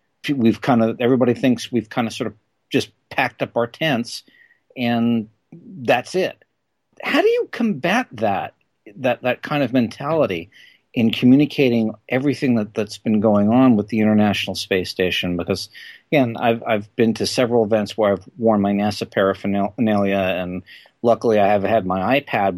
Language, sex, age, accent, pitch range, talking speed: English, male, 50-69, American, 100-125 Hz, 165 wpm